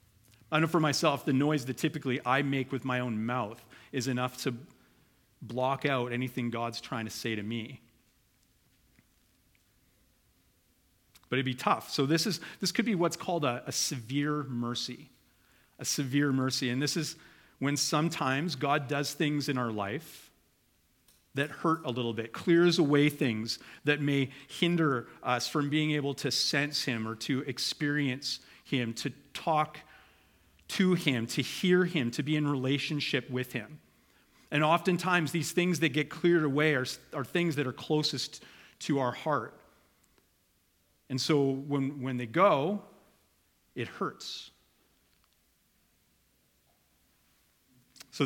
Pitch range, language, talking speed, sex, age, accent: 120-150 Hz, English, 145 wpm, male, 40-59, American